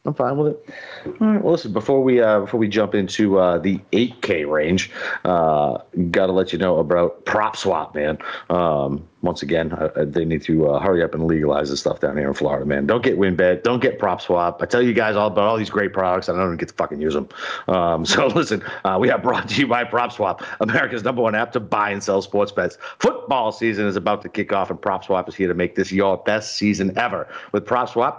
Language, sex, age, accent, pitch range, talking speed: English, male, 40-59, American, 90-115 Hz, 230 wpm